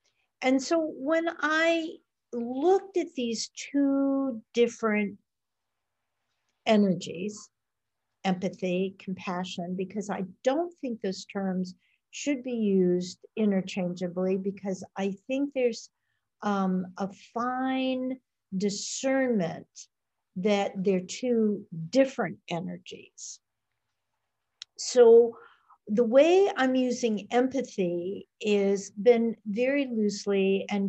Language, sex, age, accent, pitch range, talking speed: English, female, 50-69, American, 190-255 Hz, 90 wpm